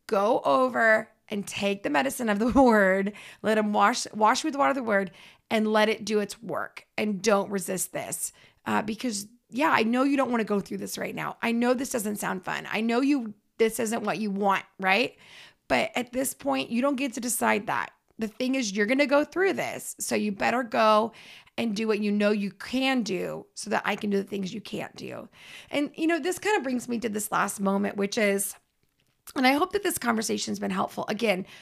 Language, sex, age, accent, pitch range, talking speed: English, female, 30-49, American, 205-260 Hz, 230 wpm